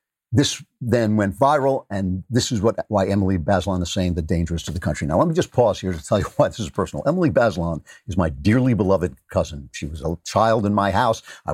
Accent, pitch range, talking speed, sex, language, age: American, 95-125 Hz, 240 wpm, male, English, 50-69